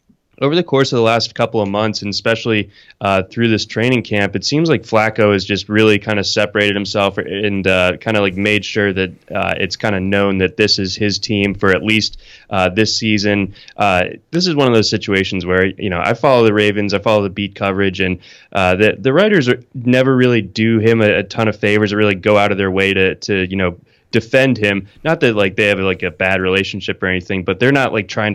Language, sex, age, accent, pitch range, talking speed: English, male, 20-39, American, 100-110 Hz, 240 wpm